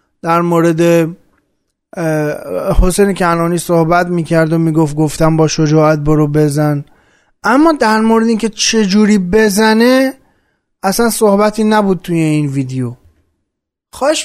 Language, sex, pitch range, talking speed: Persian, male, 170-230 Hz, 110 wpm